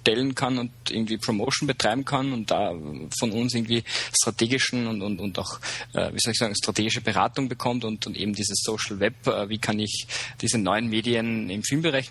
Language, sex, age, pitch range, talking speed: German, male, 20-39, 115-130 Hz, 200 wpm